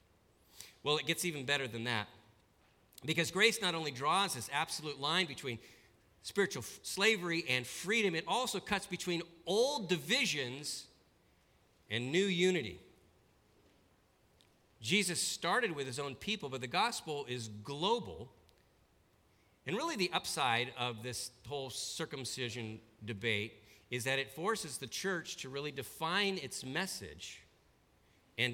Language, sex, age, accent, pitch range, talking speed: English, male, 50-69, American, 120-180 Hz, 130 wpm